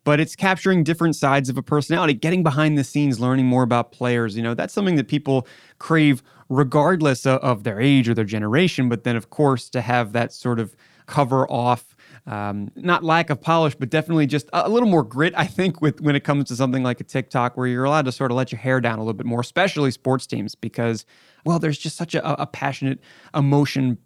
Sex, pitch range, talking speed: male, 125-155 Hz, 225 wpm